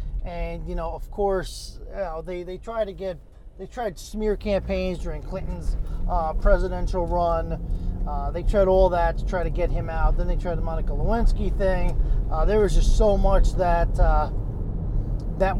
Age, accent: 30-49, American